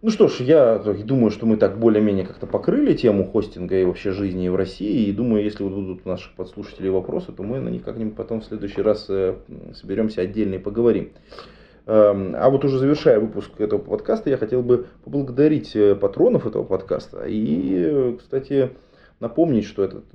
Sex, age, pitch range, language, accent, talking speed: male, 20-39, 105-160 Hz, Russian, native, 175 wpm